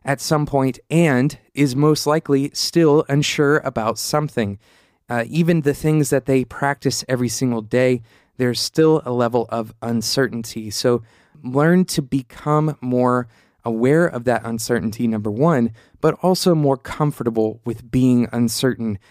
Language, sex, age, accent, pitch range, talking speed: English, male, 20-39, American, 115-145 Hz, 140 wpm